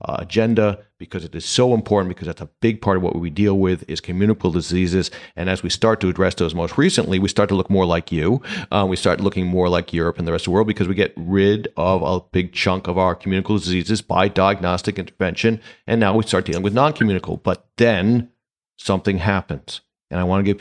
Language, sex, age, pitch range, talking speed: English, male, 40-59, 90-105 Hz, 230 wpm